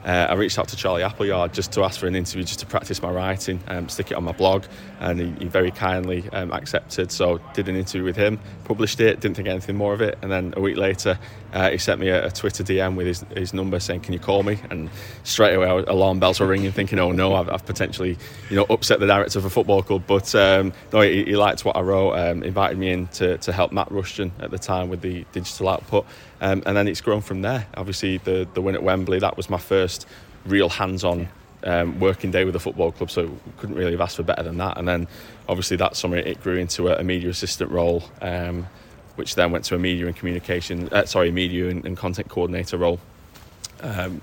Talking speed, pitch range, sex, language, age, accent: 245 wpm, 90-100 Hz, male, English, 20-39, British